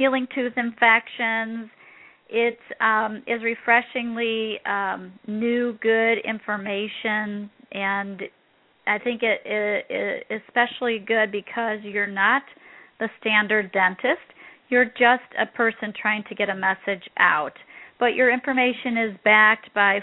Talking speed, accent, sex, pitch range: 120 wpm, American, female, 200-235 Hz